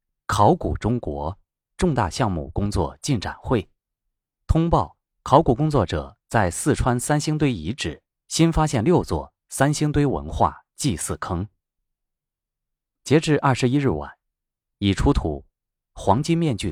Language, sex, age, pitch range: Chinese, male, 30-49, 85-130 Hz